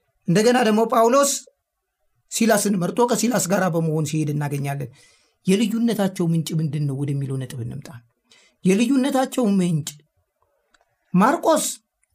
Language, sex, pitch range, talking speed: Amharic, male, 180-235 Hz, 90 wpm